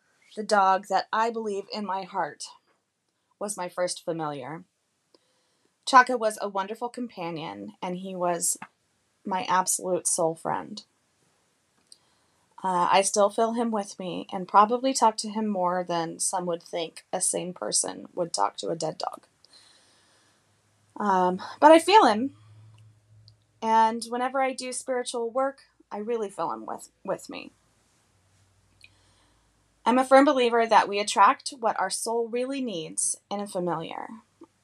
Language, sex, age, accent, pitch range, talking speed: English, female, 20-39, American, 165-215 Hz, 145 wpm